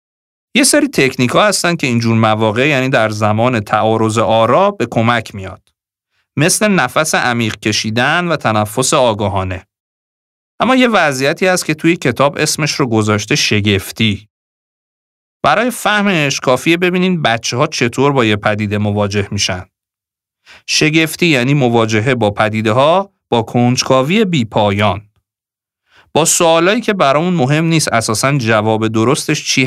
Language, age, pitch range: Persian, 40-59, 105-165 Hz